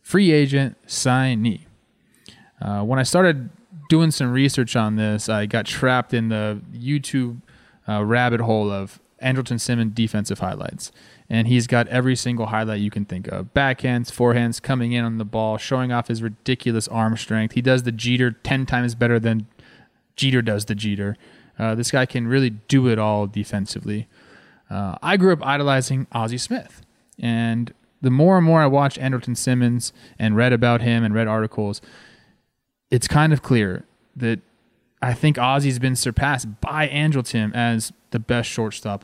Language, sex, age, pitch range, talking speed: English, male, 20-39, 110-130 Hz, 170 wpm